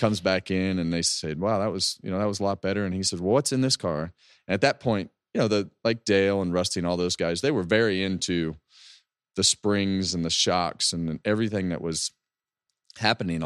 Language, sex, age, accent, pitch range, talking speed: English, male, 30-49, American, 85-105 Hz, 230 wpm